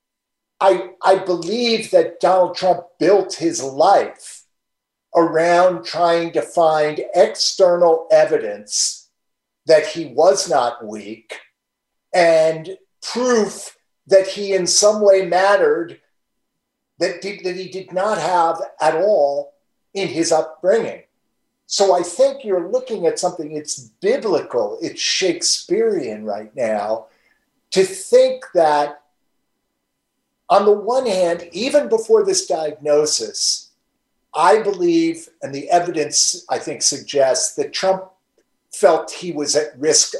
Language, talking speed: English, 115 wpm